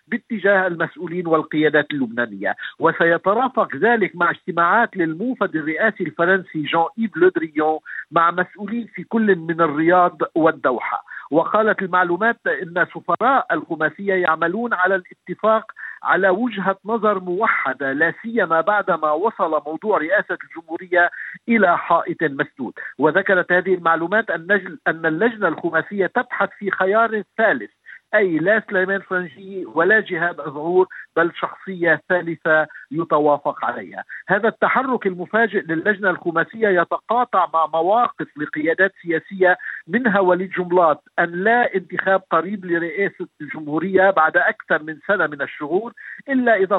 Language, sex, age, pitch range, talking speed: Arabic, male, 50-69, 165-210 Hz, 120 wpm